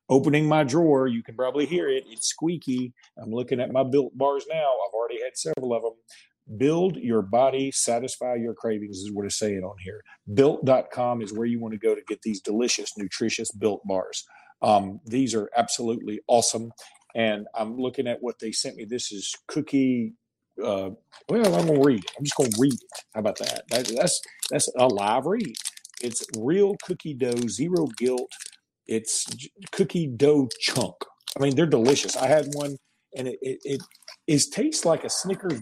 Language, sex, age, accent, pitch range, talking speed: English, male, 40-59, American, 115-145 Hz, 190 wpm